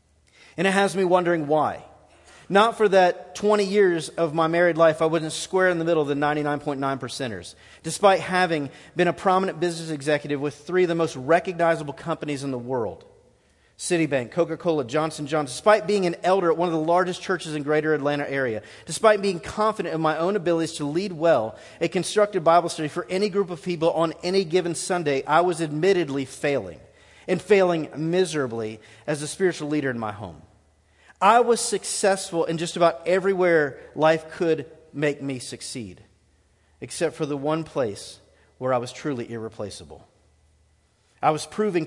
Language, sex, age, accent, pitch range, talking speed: English, male, 40-59, American, 125-175 Hz, 180 wpm